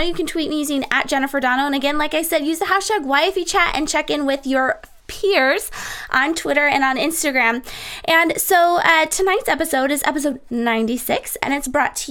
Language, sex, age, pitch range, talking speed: English, female, 20-39, 240-330 Hz, 205 wpm